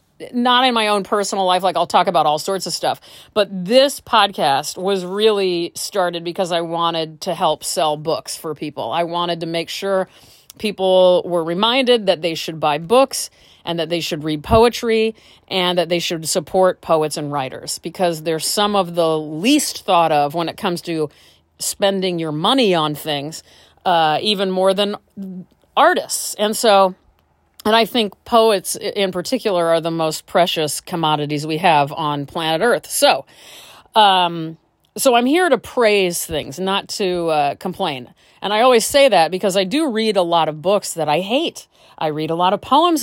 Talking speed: 180 wpm